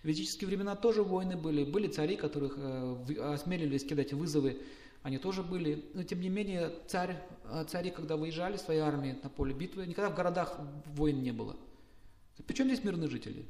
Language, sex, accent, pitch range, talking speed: Russian, male, native, 140-180 Hz, 170 wpm